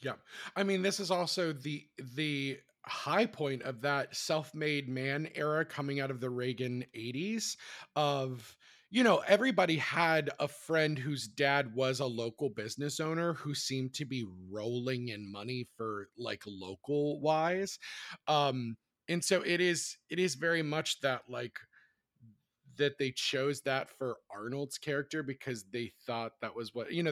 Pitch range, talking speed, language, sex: 125-155 Hz, 160 wpm, English, male